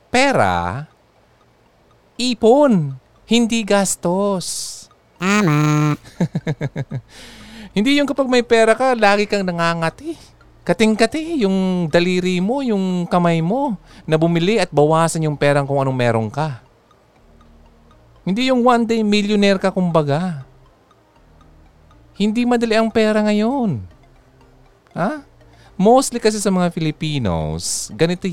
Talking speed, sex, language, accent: 105 wpm, male, Filipino, native